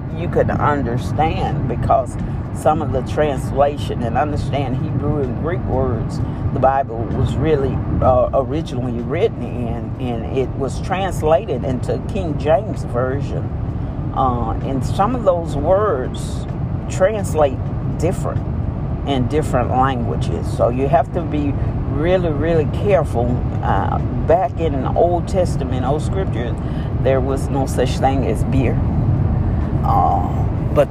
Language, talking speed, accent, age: English, 130 wpm, American, 50-69